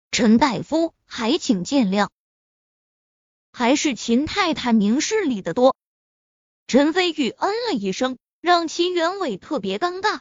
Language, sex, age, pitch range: Chinese, female, 20-39, 235-340 Hz